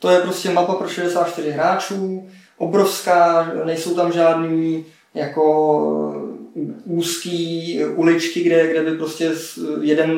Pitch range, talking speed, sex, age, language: 155-190 Hz, 110 wpm, male, 20-39, Czech